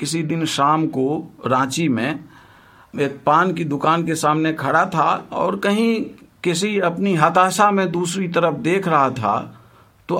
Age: 50-69